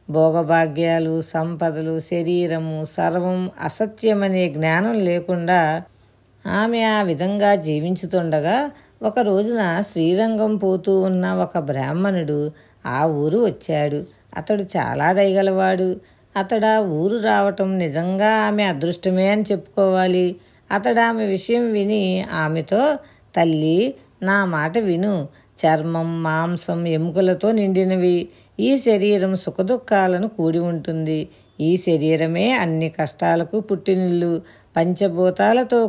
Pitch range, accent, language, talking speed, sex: 165-205 Hz, native, Telugu, 90 wpm, female